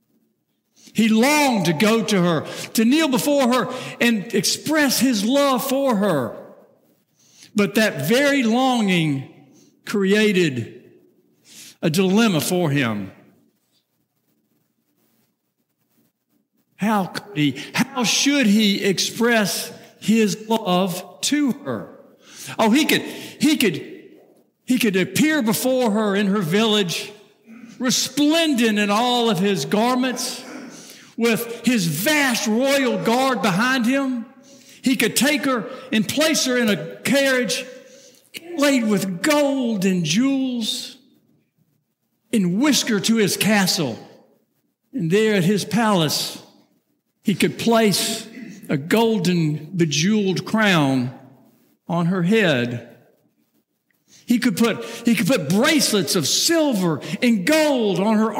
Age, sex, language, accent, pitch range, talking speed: 60-79, male, English, American, 195-255 Hz, 115 wpm